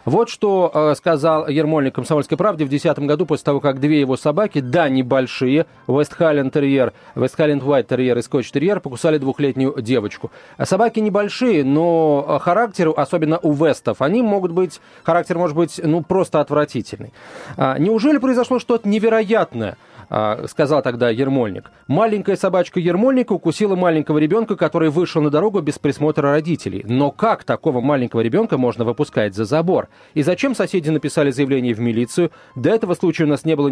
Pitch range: 140-190 Hz